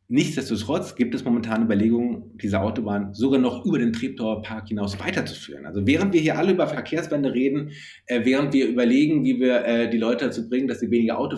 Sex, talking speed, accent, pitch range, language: male, 190 wpm, German, 115-150 Hz, German